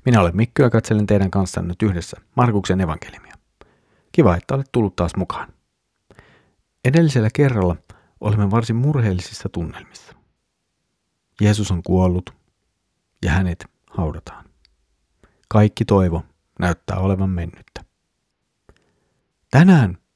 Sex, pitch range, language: male, 95-115 Hz, Finnish